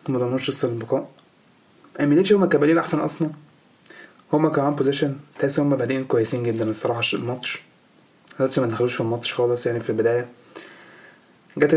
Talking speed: 140 wpm